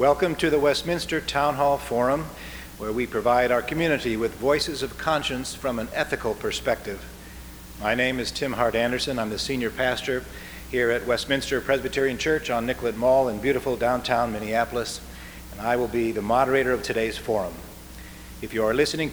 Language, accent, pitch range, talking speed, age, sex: English, American, 110-140 Hz, 175 wpm, 50-69, male